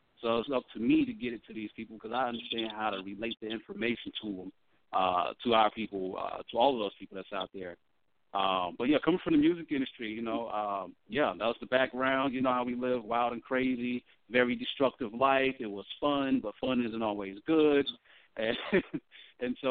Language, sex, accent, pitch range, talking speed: English, male, American, 100-125 Hz, 220 wpm